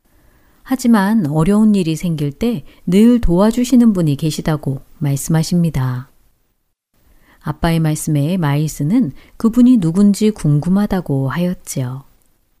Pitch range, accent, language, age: 145-220 Hz, native, Korean, 40-59